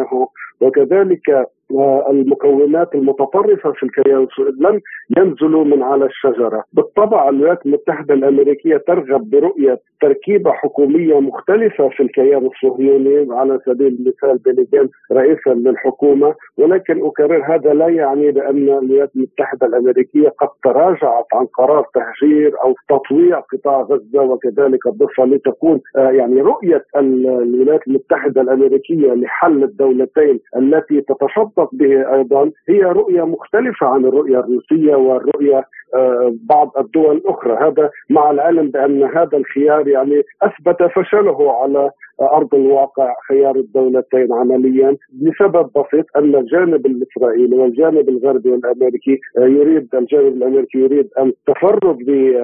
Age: 50-69